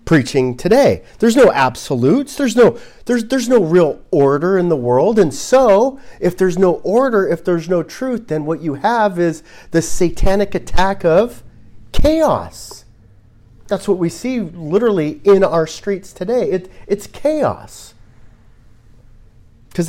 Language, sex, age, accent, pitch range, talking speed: English, male, 40-59, American, 125-210 Hz, 145 wpm